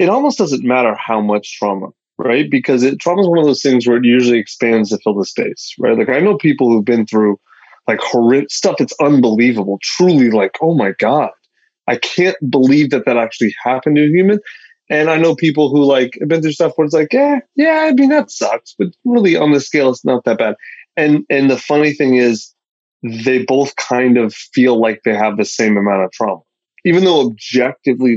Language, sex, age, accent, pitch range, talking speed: English, male, 20-39, American, 115-165 Hz, 215 wpm